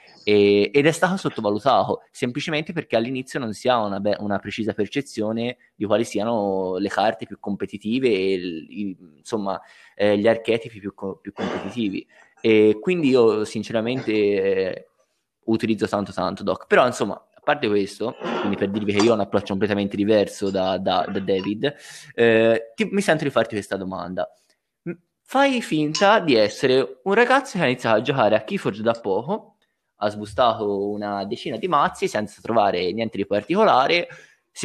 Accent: native